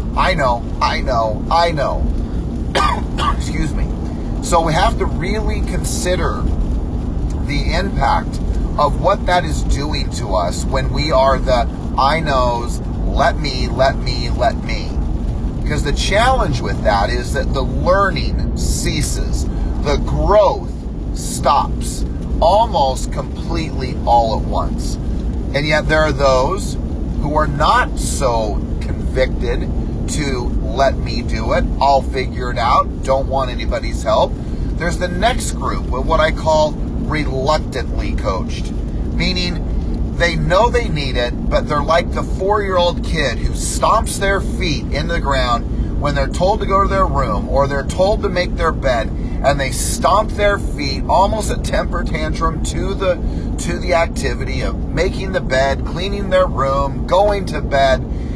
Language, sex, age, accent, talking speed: English, male, 30-49, American, 145 wpm